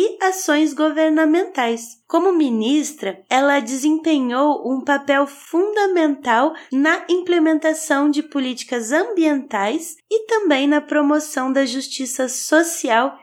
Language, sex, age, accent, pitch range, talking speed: Portuguese, female, 20-39, Brazilian, 260-330 Hz, 100 wpm